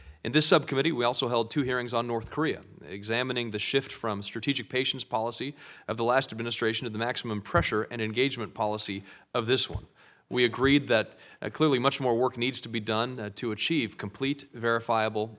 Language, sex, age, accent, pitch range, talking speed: English, male, 40-59, American, 105-125 Hz, 190 wpm